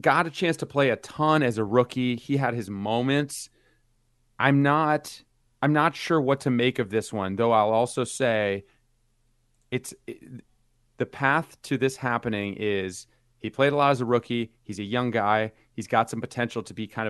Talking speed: 195 wpm